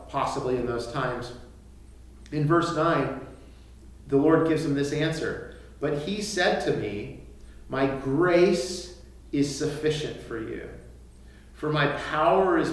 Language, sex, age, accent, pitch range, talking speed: English, male, 40-59, American, 120-160 Hz, 130 wpm